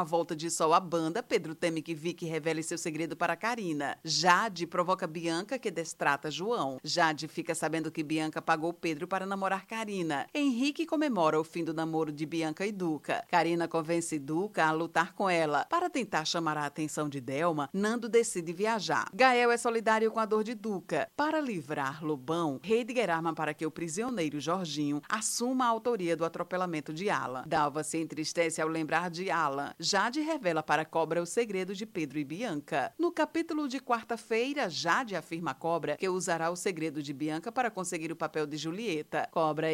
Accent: Brazilian